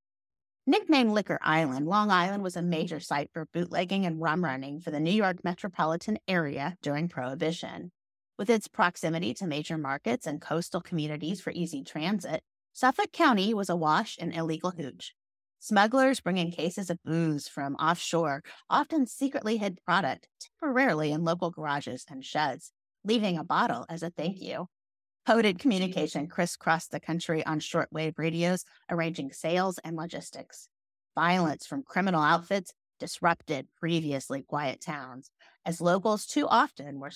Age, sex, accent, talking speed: 30-49, female, American, 145 wpm